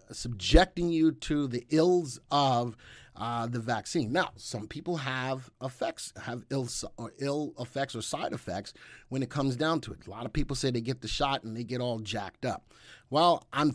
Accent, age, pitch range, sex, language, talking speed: American, 30-49, 120-160 Hz, male, English, 190 wpm